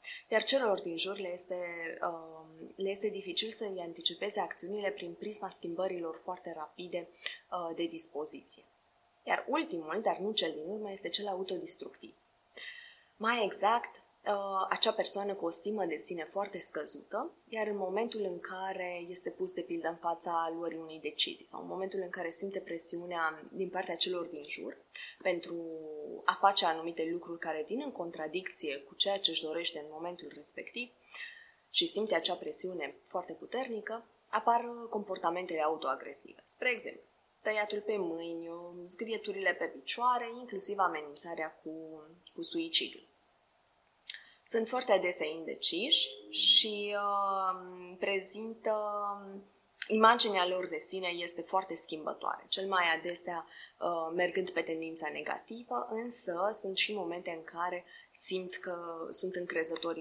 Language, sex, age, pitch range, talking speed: Romanian, female, 20-39, 170-215 Hz, 140 wpm